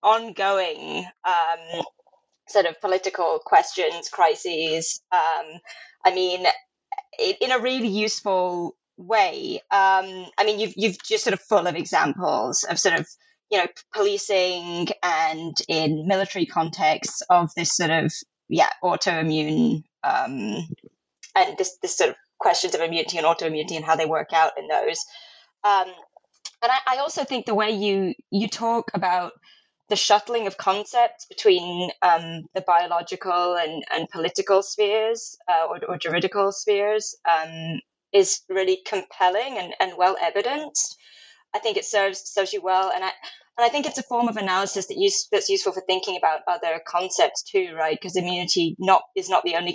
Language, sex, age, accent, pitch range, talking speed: English, female, 20-39, British, 175-240 Hz, 160 wpm